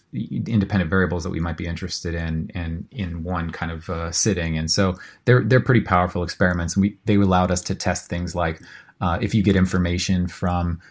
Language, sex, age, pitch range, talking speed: English, male, 30-49, 85-100 Hz, 205 wpm